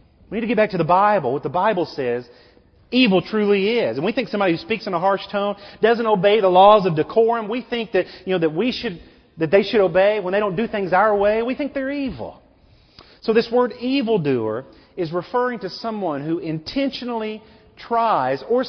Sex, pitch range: male, 165-230 Hz